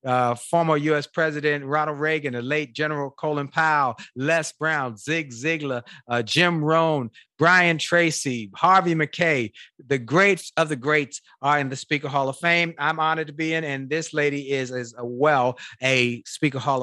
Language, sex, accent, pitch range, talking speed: English, male, American, 145-180 Hz, 170 wpm